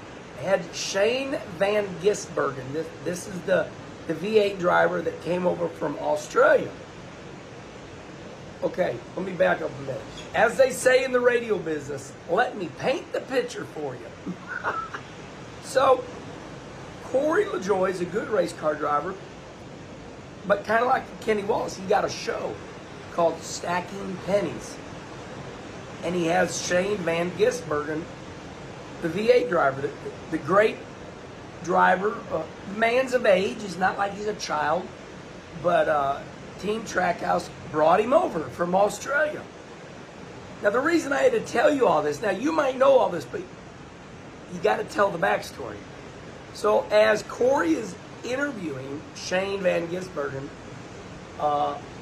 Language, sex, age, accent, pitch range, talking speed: English, male, 40-59, American, 165-255 Hz, 140 wpm